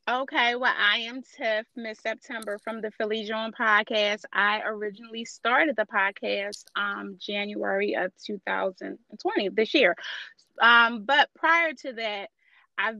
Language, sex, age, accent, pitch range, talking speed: English, female, 30-49, American, 195-250 Hz, 135 wpm